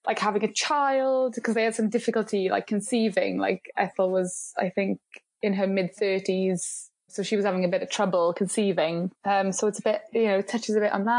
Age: 20-39